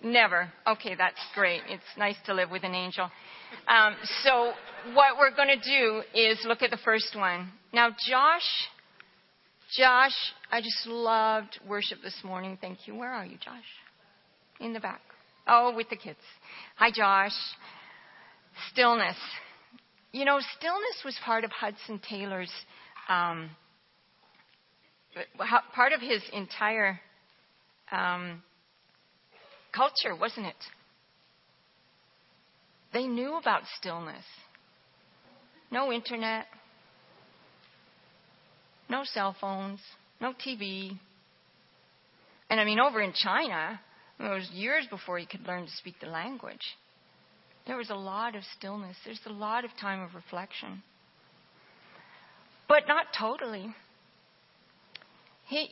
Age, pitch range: 40-59, 195-245 Hz